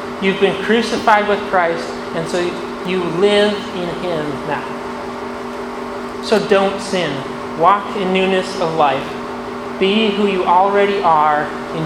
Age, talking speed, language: 30-49, 130 wpm, English